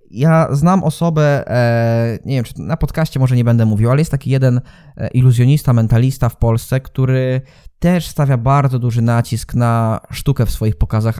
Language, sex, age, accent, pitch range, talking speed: Polish, male, 20-39, native, 120-155 Hz, 165 wpm